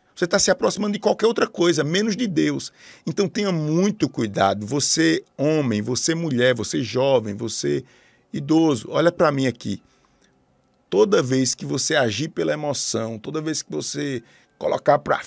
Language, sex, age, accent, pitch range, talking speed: Portuguese, male, 50-69, Brazilian, 130-190 Hz, 155 wpm